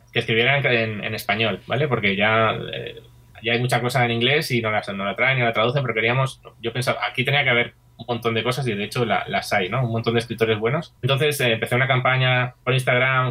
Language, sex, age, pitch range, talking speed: English, male, 20-39, 115-140 Hz, 250 wpm